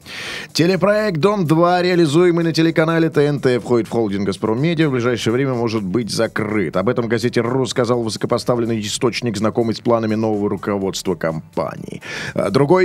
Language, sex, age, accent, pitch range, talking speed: Russian, male, 30-49, native, 120-170 Hz, 140 wpm